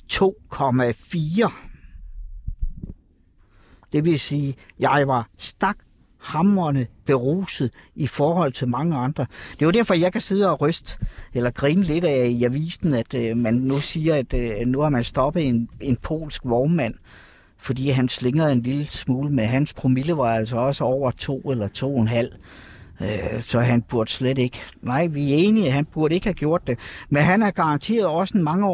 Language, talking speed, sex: Danish, 170 wpm, male